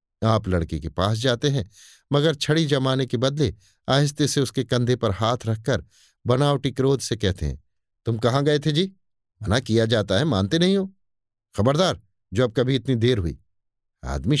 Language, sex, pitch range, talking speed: Hindi, male, 100-140 Hz, 175 wpm